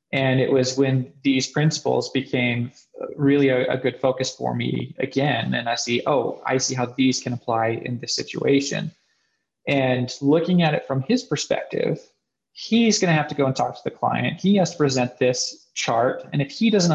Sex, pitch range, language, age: male, 125-150 Hz, English, 20-39